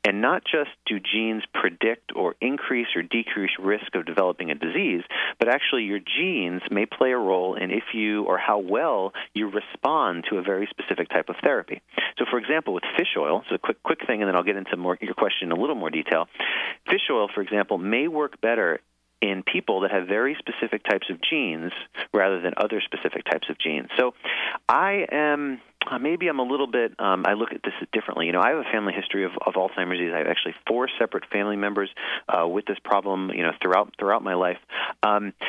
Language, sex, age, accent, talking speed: English, male, 40-59, American, 215 wpm